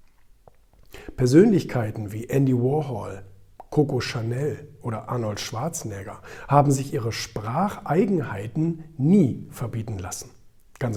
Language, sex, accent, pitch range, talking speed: German, male, German, 115-155 Hz, 95 wpm